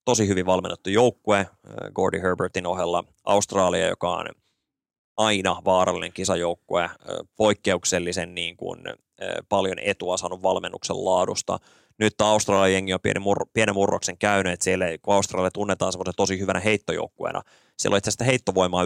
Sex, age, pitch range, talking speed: male, 20-39, 90-105 Hz, 135 wpm